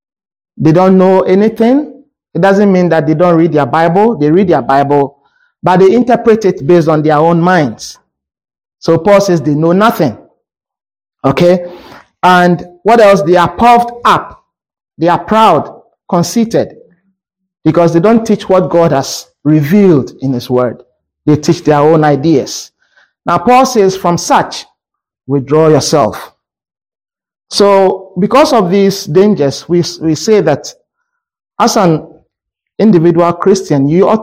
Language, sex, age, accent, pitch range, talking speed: English, male, 50-69, Nigerian, 150-200 Hz, 145 wpm